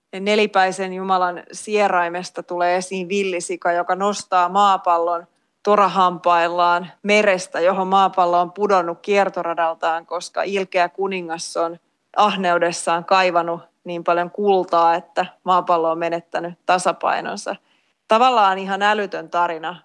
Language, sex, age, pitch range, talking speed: Finnish, female, 30-49, 175-200 Hz, 105 wpm